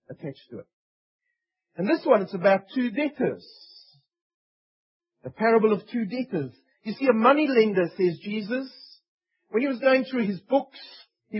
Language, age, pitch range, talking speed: English, 40-59, 190-265 Hz, 155 wpm